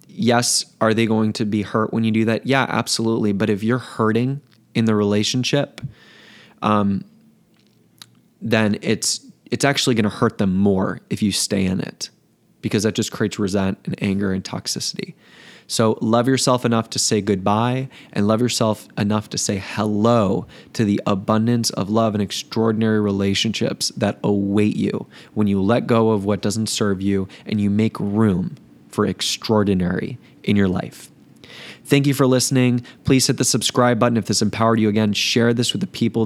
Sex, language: male, English